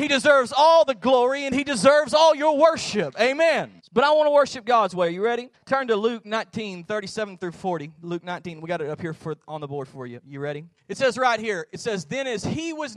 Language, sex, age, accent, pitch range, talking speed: English, male, 30-49, American, 170-235 Hz, 240 wpm